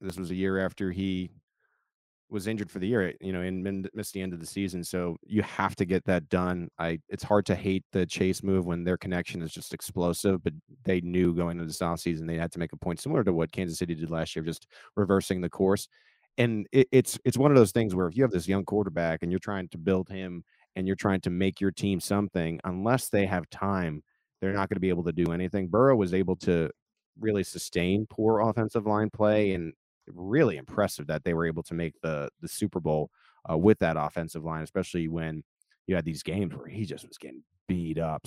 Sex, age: male, 30-49